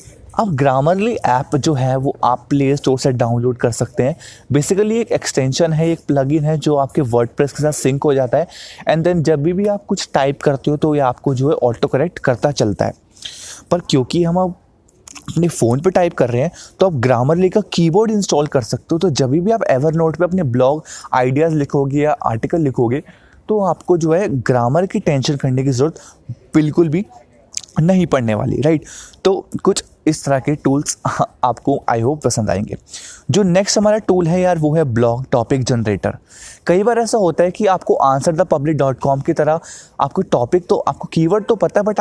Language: Hindi